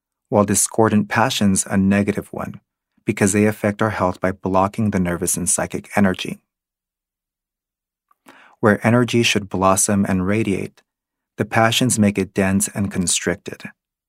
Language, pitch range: English, 95-105 Hz